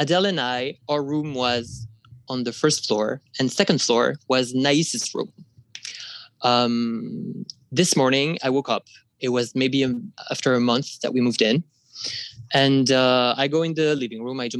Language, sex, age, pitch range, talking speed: English, male, 20-39, 120-145 Hz, 175 wpm